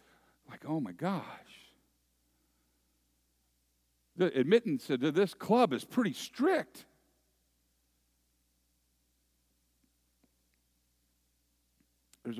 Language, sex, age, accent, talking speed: English, male, 50-69, American, 65 wpm